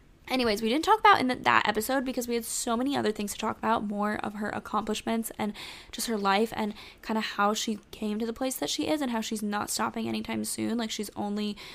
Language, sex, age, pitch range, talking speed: English, female, 10-29, 205-230 Hz, 250 wpm